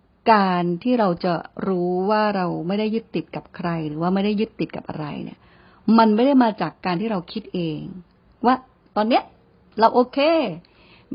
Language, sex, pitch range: Thai, female, 180-240 Hz